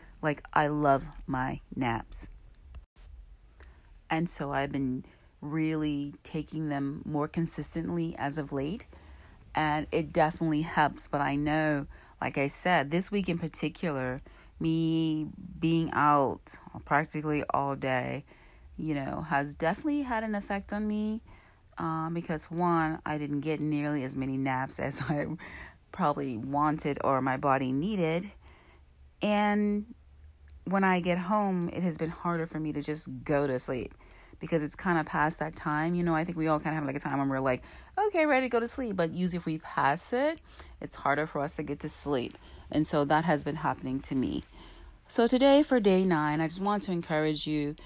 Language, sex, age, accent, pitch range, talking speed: English, female, 40-59, American, 140-180 Hz, 175 wpm